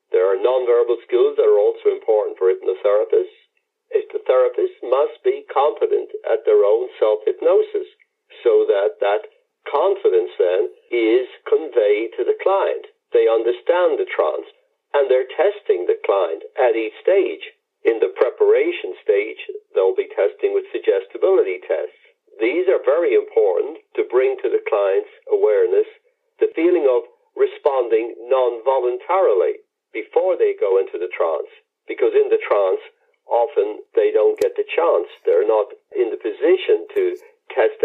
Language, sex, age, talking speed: English, male, 60-79, 140 wpm